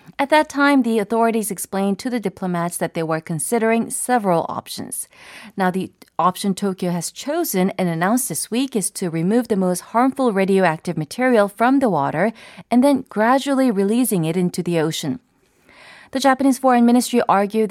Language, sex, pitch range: Korean, female, 175-235 Hz